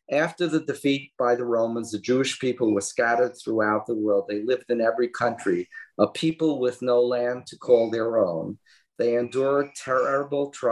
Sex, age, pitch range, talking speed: male, 40-59, 110-140 Hz, 175 wpm